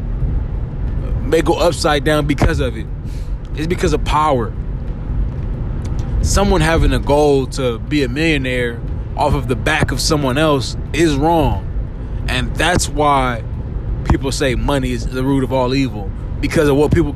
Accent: American